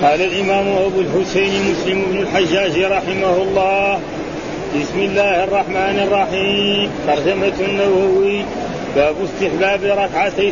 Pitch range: 195-200 Hz